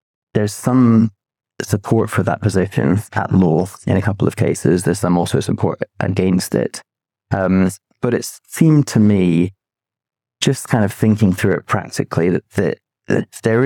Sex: male